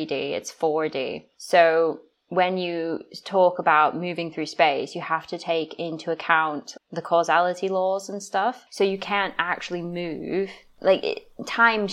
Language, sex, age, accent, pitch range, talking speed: English, female, 20-39, British, 160-200 Hz, 140 wpm